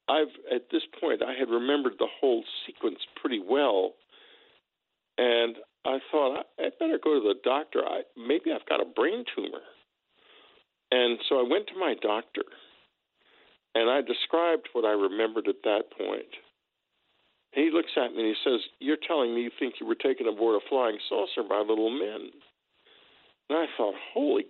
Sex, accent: male, American